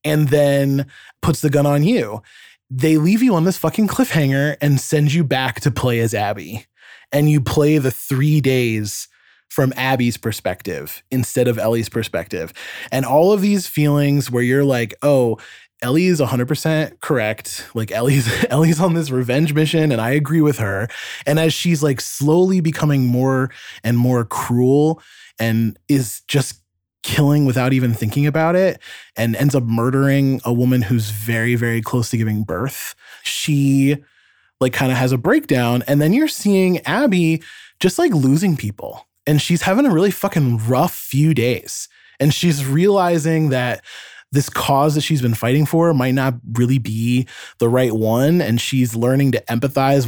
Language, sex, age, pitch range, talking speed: English, male, 20-39, 120-155 Hz, 170 wpm